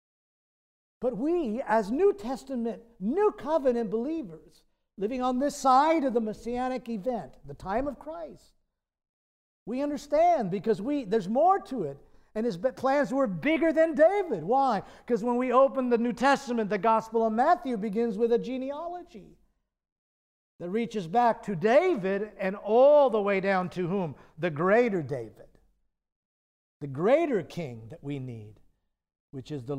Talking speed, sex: 150 wpm, male